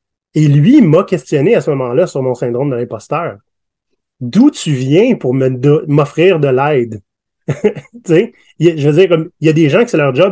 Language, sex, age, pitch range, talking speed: French, male, 30-49, 130-160 Hz, 205 wpm